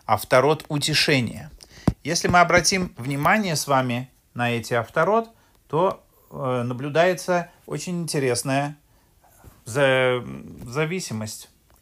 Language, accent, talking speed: Russian, native, 80 wpm